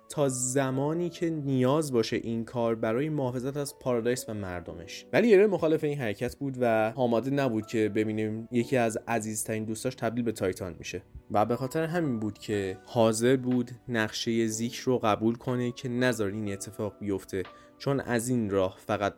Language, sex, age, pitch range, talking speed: Persian, male, 20-39, 110-135 Hz, 170 wpm